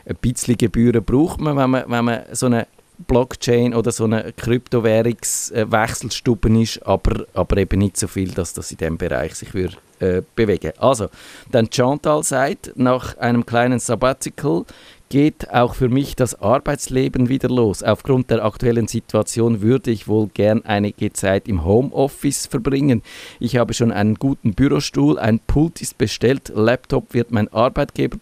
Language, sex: German, male